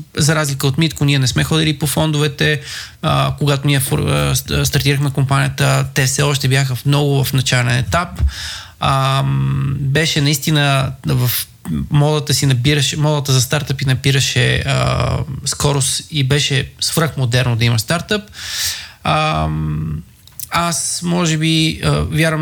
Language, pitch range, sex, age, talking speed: Bulgarian, 125-150 Hz, male, 20-39, 120 wpm